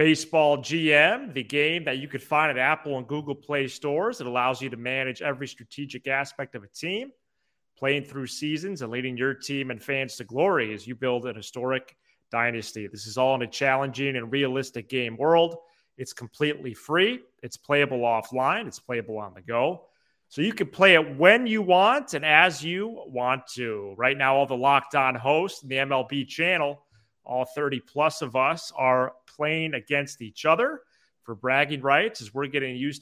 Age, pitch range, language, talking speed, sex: 30-49, 125-150 Hz, English, 185 wpm, male